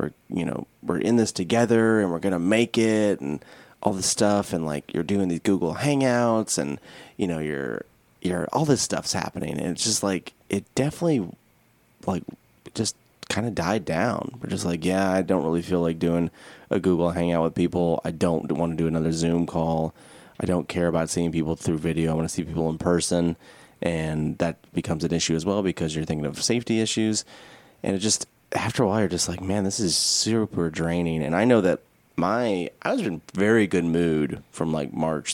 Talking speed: 210 wpm